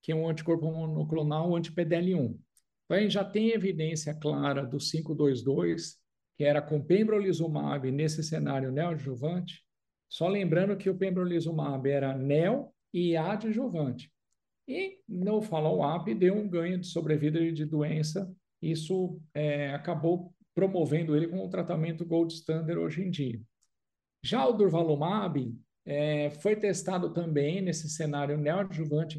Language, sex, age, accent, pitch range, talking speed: Portuguese, male, 50-69, Brazilian, 150-190 Hz, 130 wpm